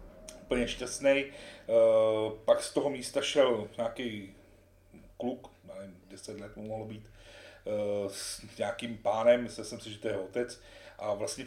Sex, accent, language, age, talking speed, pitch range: male, native, Czech, 40-59, 145 wpm, 110-135 Hz